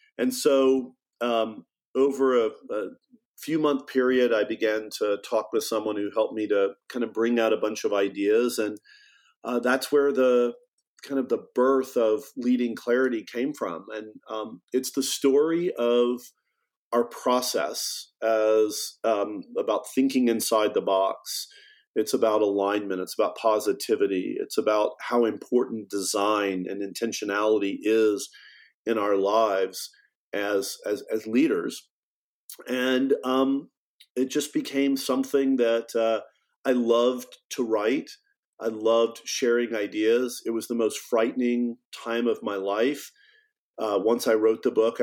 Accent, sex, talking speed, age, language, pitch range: American, male, 145 wpm, 40-59, English, 110-135 Hz